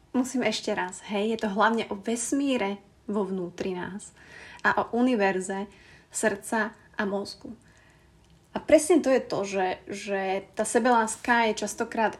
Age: 20-39